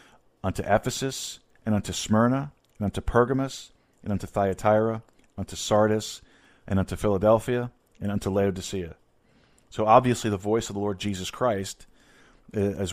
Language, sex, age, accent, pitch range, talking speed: English, male, 40-59, American, 95-115 Hz, 135 wpm